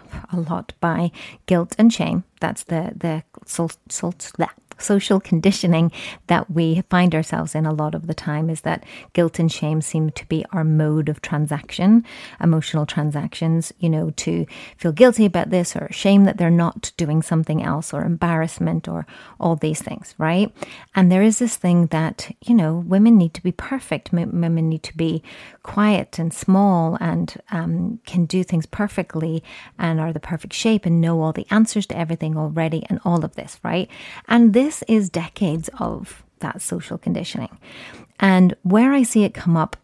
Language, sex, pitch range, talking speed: English, female, 160-195 Hz, 180 wpm